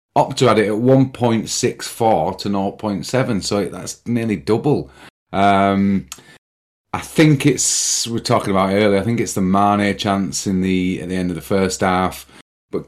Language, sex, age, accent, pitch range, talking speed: English, male, 30-49, British, 95-130 Hz, 170 wpm